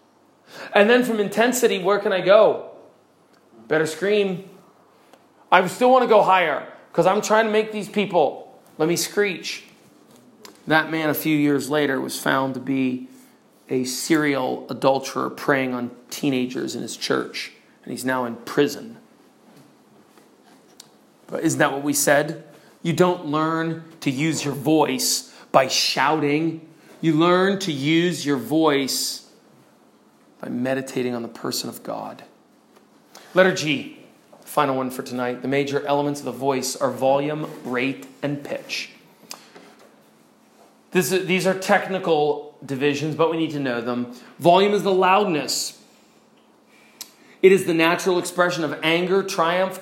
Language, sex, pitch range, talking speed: English, male, 140-190 Hz, 140 wpm